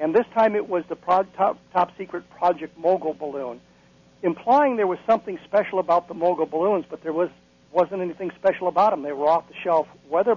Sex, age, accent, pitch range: male, 60-79, American, 160-200 Hz